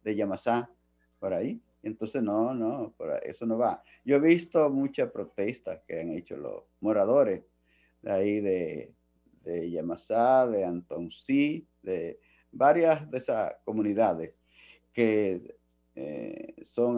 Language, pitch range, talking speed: Spanish, 90-135 Hz, 130 wpm